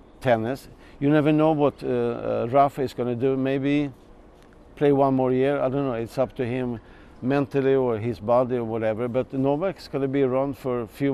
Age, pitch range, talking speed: 50-69, 120-140 Hz, 215 wpm